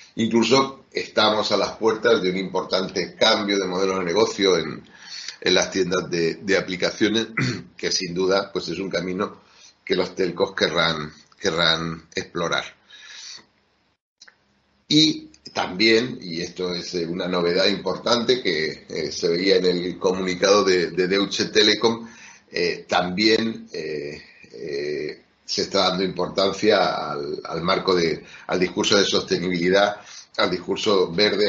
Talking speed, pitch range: 135 wpm, 90-120 Hz